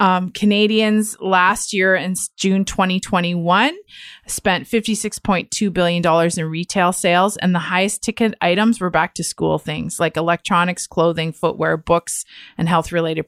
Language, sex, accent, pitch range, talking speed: English, female, American, 180-230 Hz, 140 wpm